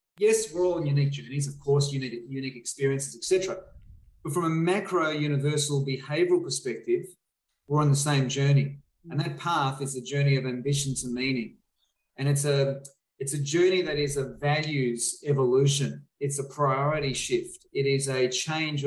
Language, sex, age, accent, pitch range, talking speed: English, male, 30-49, Australian, 135-155 Hz, 165 wpm